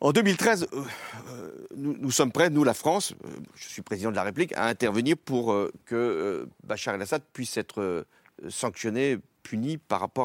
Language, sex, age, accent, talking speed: French, male, 50-69, French, 160 wpm